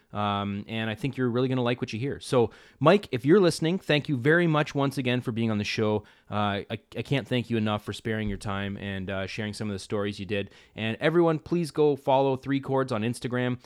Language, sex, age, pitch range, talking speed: English, male, 30-49, 100-125 Hz, 250 wpm